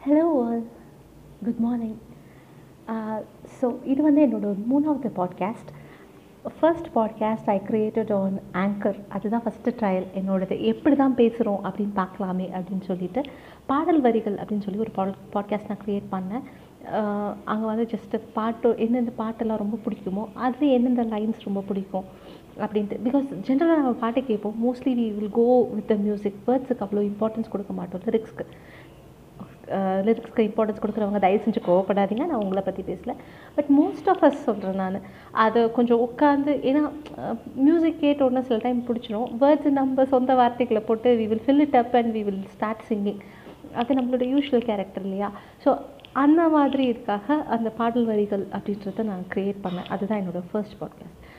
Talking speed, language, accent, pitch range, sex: 165 wpm, Tamil, native, 205-250 Hz, female